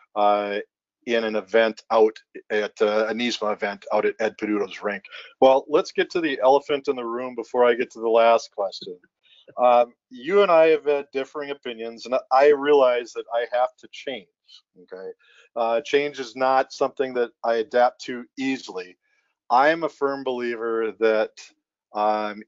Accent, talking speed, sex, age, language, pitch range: American, 175 wpm, male, 40-59, English, 115-145 Hz